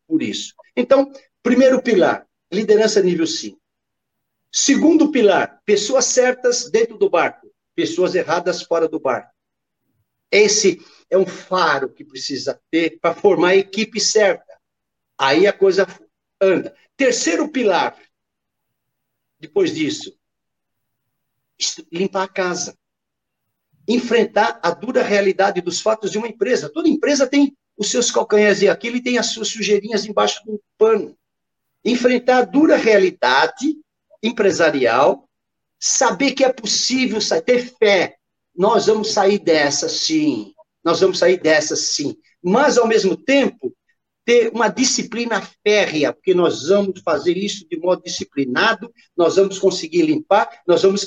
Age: 60-79